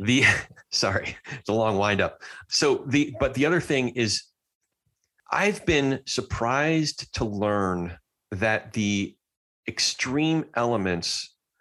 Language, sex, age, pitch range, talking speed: English, male, 40-59, 90-120 Hz, 115 wpm